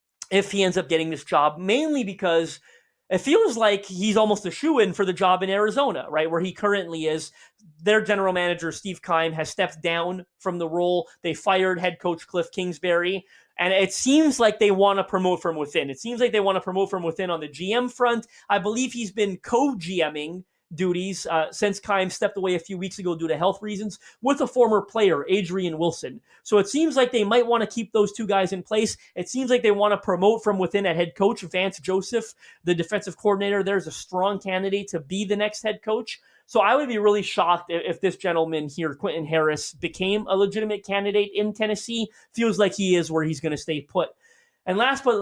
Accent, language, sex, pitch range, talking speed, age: American, English, male, 175-210 Hz, 220 wpm, 30-49